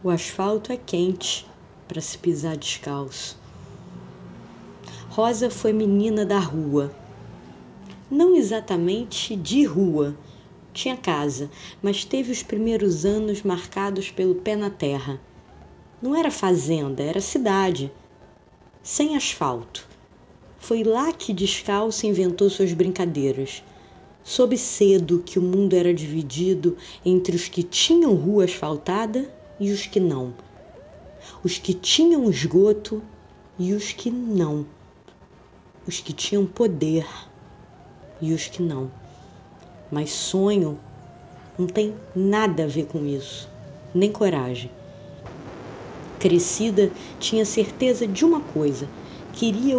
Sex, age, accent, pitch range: female, 20-39, Brazilian, 150-210 Hz